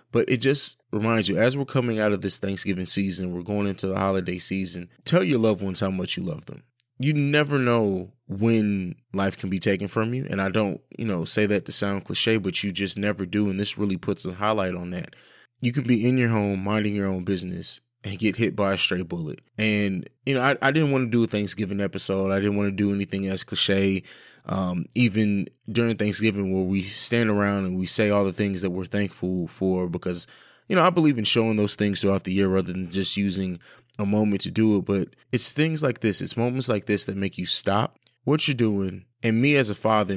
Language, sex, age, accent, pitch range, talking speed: English, male, 20-39, American, 95-115 Hz, 235 wpm